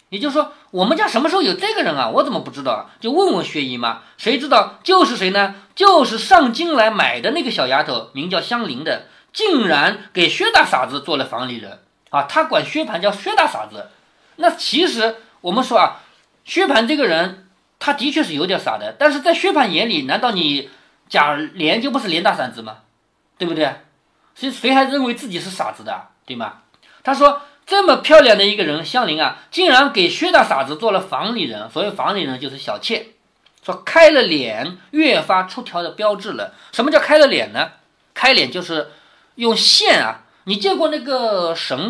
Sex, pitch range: male, 180-295 Hz